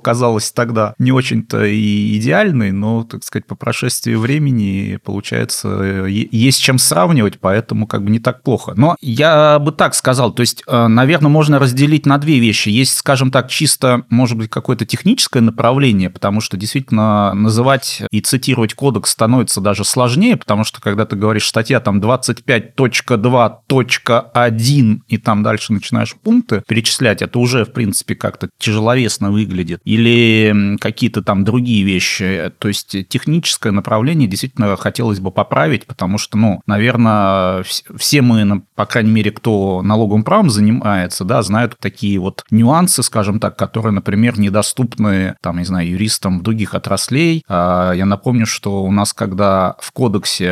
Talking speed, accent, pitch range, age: 150 wpm, native, 105-125 Hz, 30-49